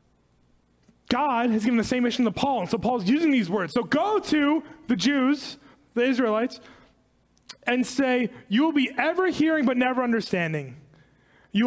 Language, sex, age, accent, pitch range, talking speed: English, male, 20-39, American, 185-275 Hz, 165 wpm